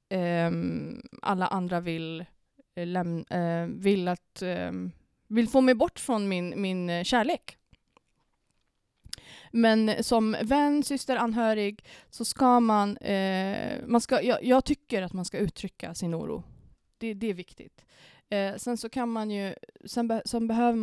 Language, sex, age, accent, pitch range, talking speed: Swedish, female, 20-39, native, 170-220 Hz, 130 wpm